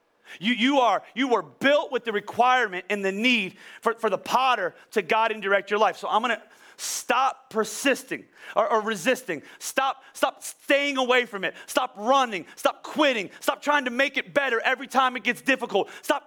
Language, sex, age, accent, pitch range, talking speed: English, male, 30-49, American, 205-265 Hz, 195 wpm